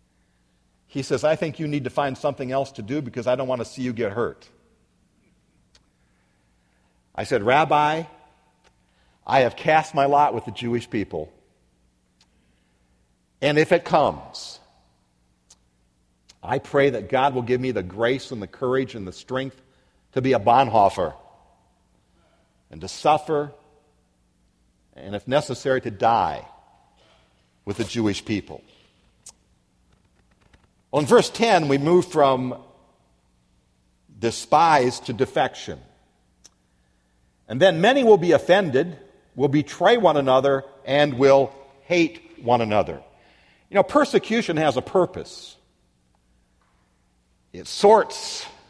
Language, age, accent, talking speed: English, 50-69, American, 125 wpm